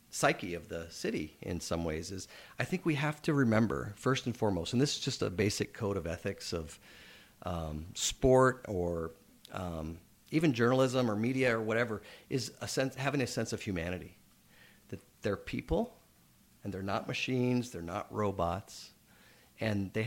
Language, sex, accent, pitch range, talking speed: English, male, American, 95-120 Hz, 165 wpm